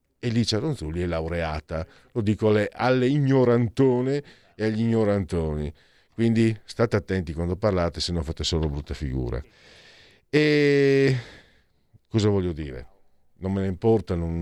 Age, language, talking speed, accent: 50-69, Italian, 135 wpm, native